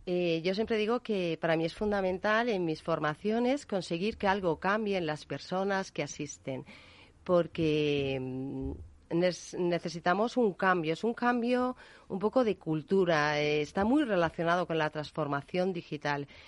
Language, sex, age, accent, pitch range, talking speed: Spanish, female, 40-59, Spanish, 160-215 Hz, 145 wpm